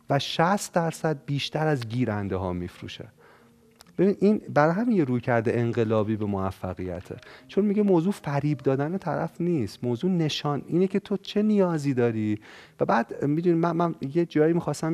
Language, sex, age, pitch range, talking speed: Persian, male, 40-59, 120-170 Hz, 160 wpm